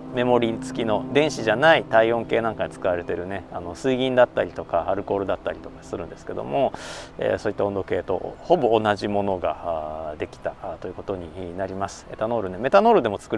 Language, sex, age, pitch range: Japanese, male, 40-59, 100-160 Hz